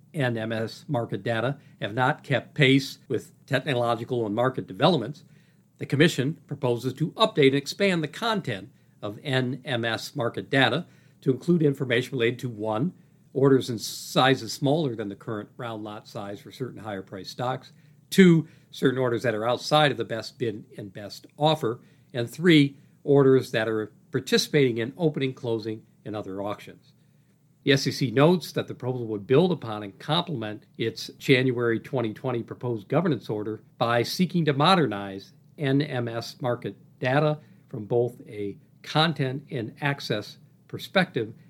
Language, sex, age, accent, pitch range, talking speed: English, male, 50-69, American, 115-150 Hz, 145 wpm